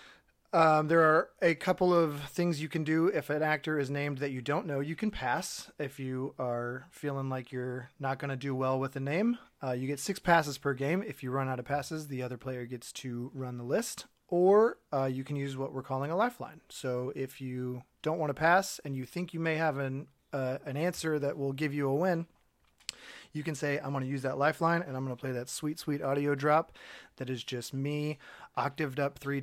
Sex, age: male, 30-49